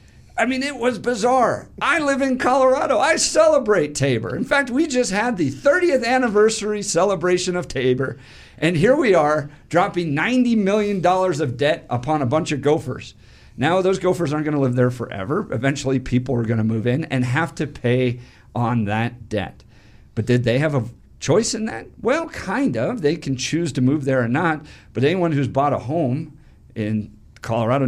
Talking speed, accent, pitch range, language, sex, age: 185 wpm, American, 125-185 Hz, English, male, 50-69